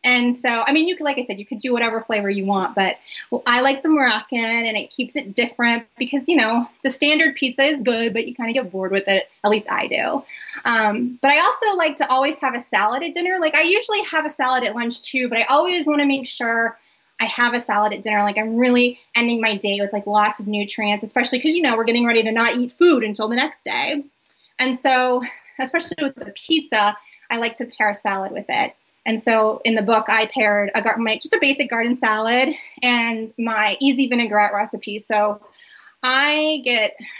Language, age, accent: English, 20-39, American